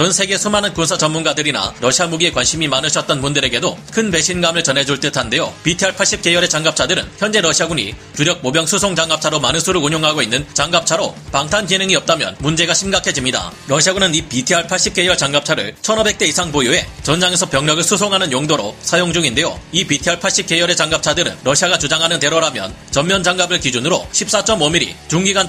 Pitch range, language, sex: 150-190 Hz, Korean, male